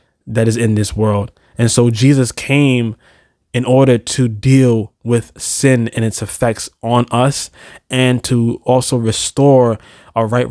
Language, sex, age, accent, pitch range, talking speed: English, male, 20-39, American, 115-130 Hz, 150 wpm